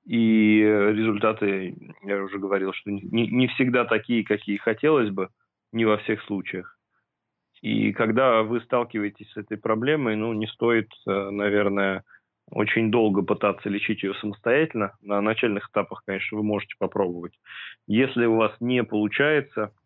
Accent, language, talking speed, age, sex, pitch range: native, Russian, 140 wpm, 30-49, male, 100-115 Hz